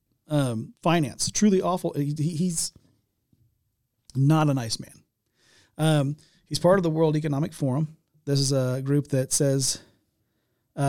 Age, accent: 40-59, American